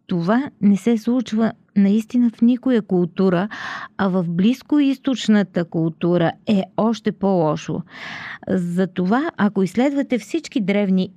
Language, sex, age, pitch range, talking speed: Bulgarian, female, 40-59, 175-235 Hz, 105 wpm